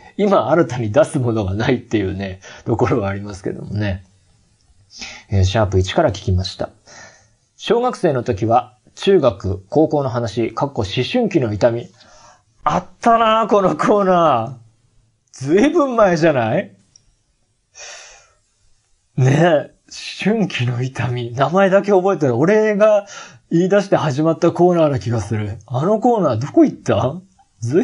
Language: Japanese